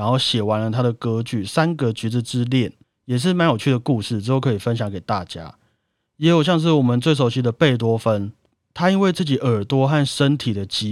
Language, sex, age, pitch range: Chinese, male, 30-49, 110-140 Hz